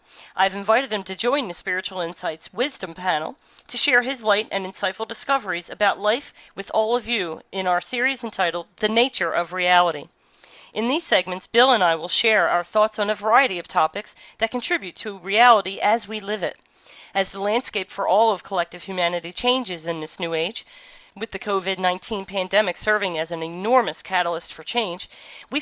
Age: 40-59